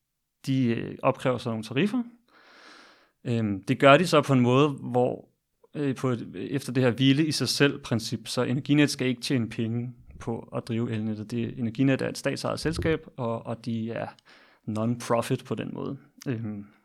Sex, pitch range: male, 115-135 Hz